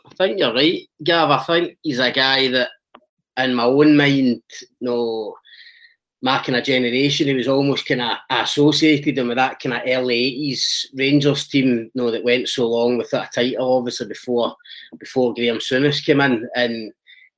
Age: 30-49